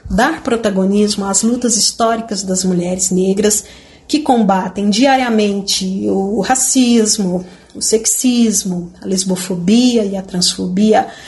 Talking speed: 105 wpm